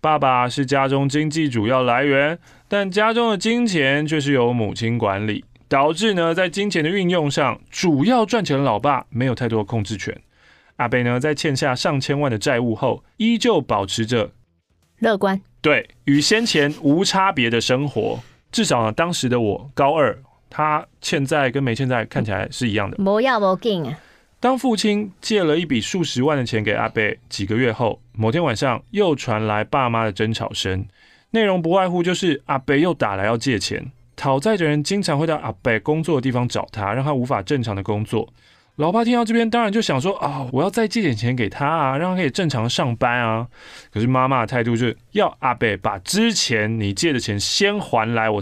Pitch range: 115-165 Hz